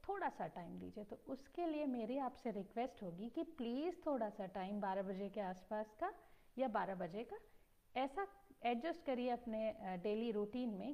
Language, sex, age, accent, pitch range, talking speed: Hindi, female, 50-69, native, 225-300 Hz, 175 wpm